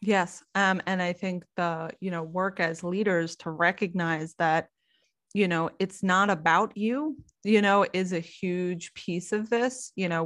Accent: American